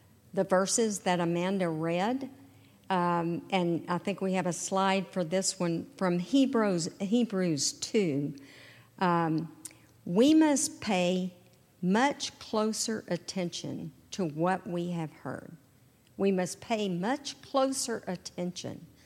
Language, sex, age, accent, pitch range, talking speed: English, female, 50-69, American, 175-235 Hz, 120 wpm